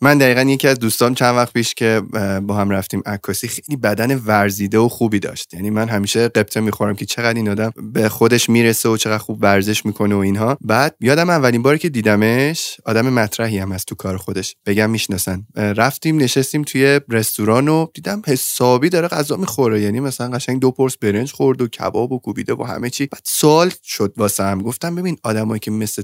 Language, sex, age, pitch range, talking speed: Persian, male, 20-39, 110-135 Hz, 200 wpm